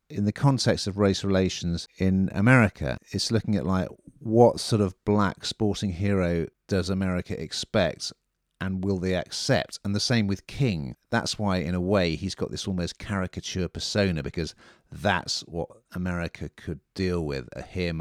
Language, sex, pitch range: English, male, 85-100 Hz